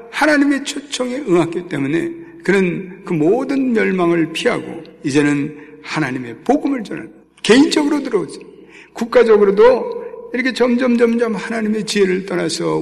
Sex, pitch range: male, 170-250 Hz